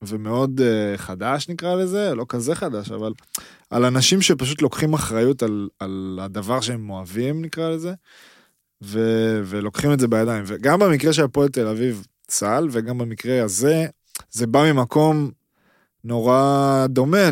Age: 20-39